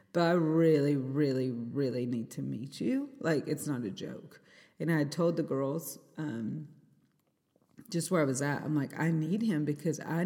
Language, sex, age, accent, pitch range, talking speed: English, female, 30-49, American, 145-175 Hz, 185 wpm